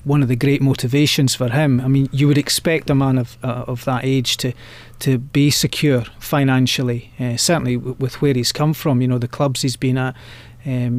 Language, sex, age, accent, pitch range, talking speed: English, male, 30-49, British, 125-145 Hz, 220 wpm